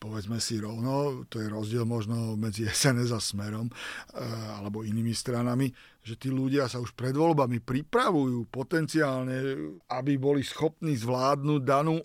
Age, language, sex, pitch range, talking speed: 50-69, Slovak, male, 120-140 Hz, 140 wpm